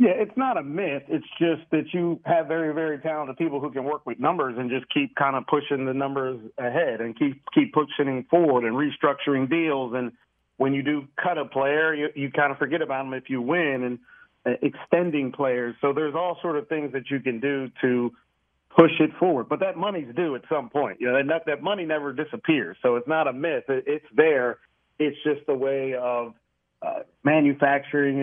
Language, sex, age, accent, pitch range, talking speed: English, male, 40-59, American, 125-155 Hz, 210 wpm